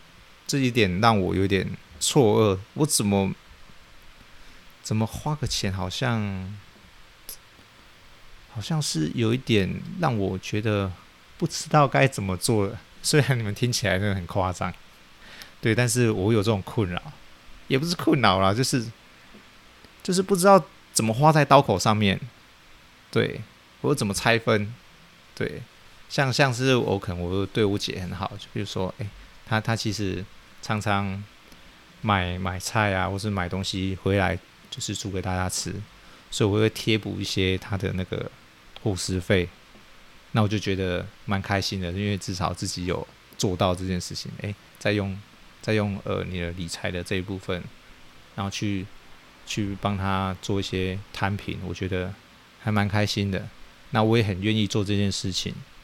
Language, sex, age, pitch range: Chinese, male, 30-49, 95-110 Hz